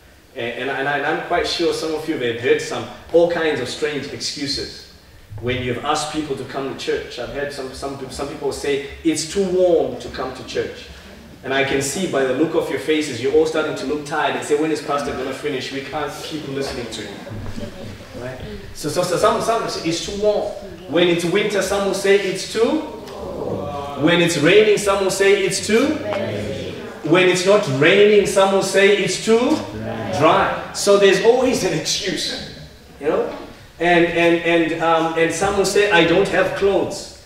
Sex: male